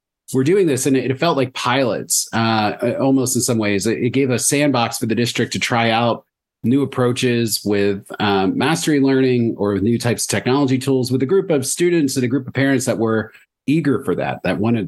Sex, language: male, English